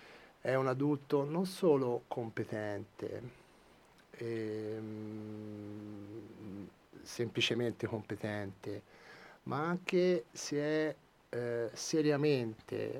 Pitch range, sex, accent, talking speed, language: 110-130 Hz, male, native, 70 wpm, Italian